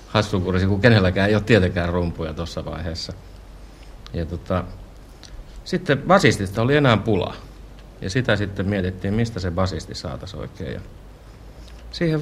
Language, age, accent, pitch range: Finnish, 60-79, native, 85-105 Hz